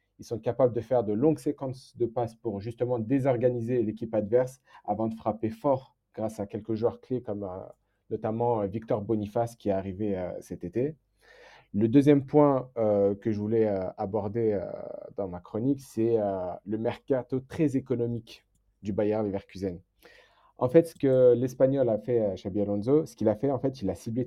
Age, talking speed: 40-59, 190 wpm